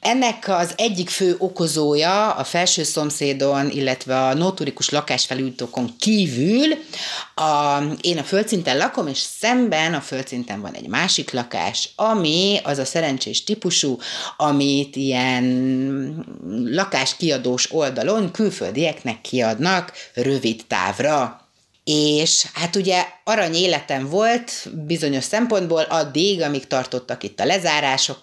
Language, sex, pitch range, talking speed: Hungarian, female, 135-185 Hz, 115 wpm